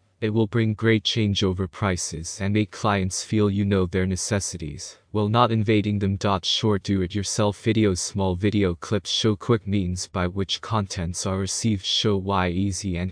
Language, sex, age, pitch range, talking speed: English, male, 20-39, 95-105 Hz, 165 wpm